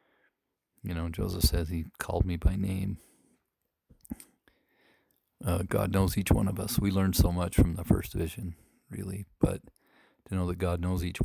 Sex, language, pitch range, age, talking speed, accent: male, English, 85-95 Hz, 40-59, 170 wpm, American